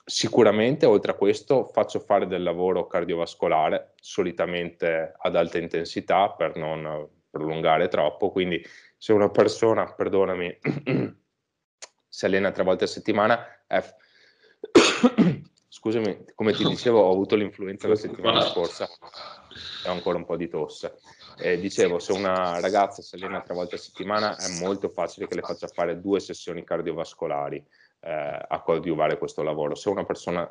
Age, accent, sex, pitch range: 30-49, native, male, 80-115 Hz